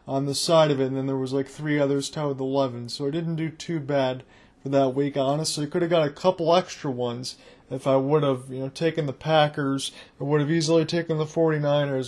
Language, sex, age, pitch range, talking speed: English, male, 20-39, 140-170 Hz, 245 wpm